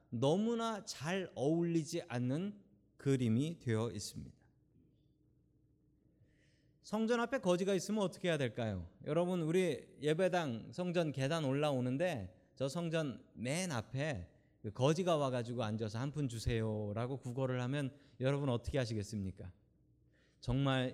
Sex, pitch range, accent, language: male, 120-170 Hz, native, Korean